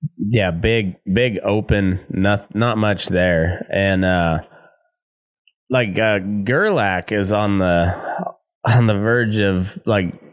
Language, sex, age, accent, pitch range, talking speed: English, male, 20-39, American, 95-115 Hz, 120 wpm